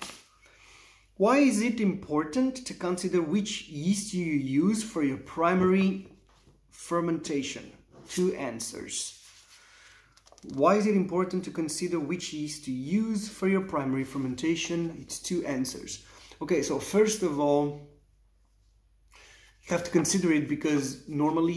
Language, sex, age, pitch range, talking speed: English, male, 30-49, 145-190 Hz, 125 wpm